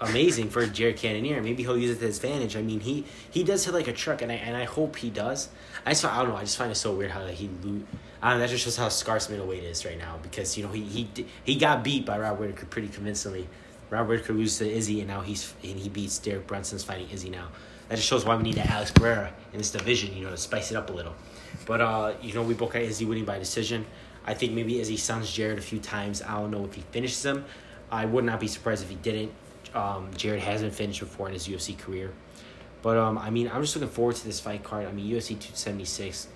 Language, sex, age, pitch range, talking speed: English, male, 20-39, 95-115 Hz, 270 wpm